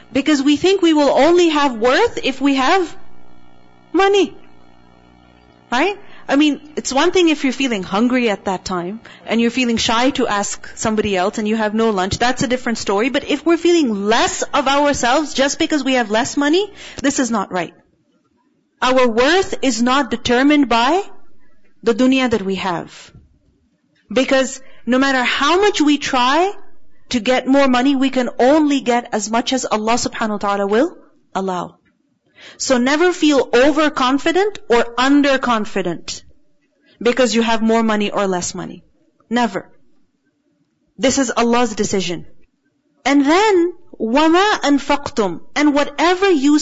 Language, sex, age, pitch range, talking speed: English, female, 40-59, 230-300 Hz, 155 wpm